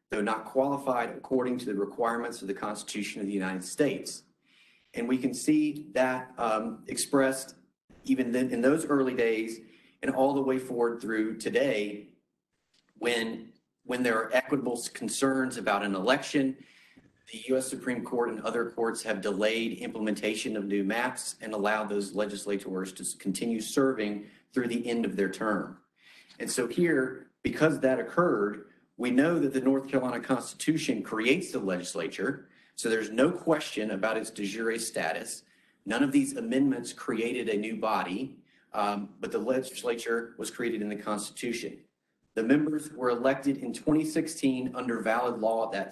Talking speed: 160 wpm